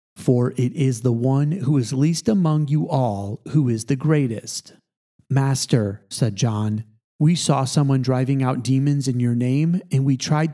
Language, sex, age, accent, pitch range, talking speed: English, male, 30-49, American, 125-150 Hz, 170 wpm